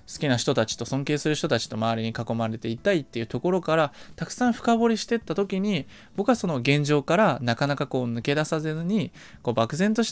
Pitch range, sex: 125-200 Hz, male